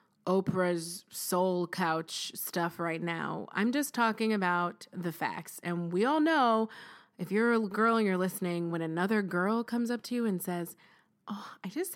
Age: 20-39